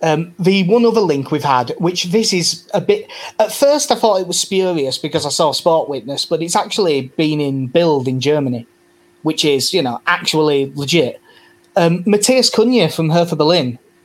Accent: British